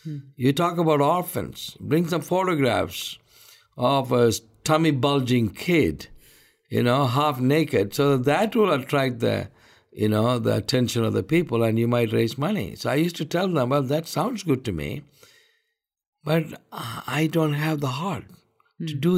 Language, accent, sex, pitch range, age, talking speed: English, Indian, male, 115-160 Hz, 60-79, 170 wpm